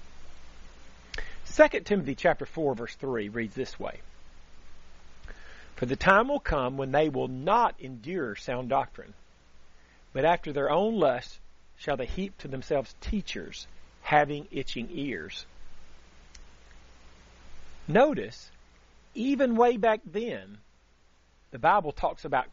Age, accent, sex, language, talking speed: 50-69, American, male, English, 115 wpm